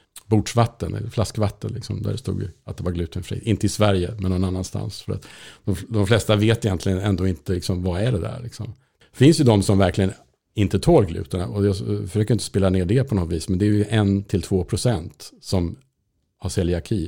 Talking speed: 210 wpm